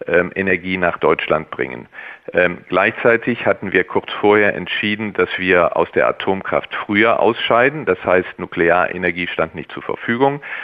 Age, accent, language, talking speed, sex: 40-59, German, German, 140 wpm, male